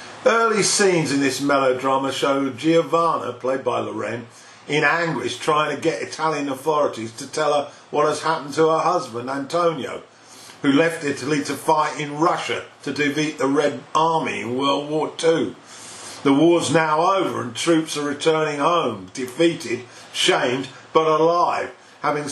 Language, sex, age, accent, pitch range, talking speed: English, male, 50-69, British, 140-160 Hz, 155 wpm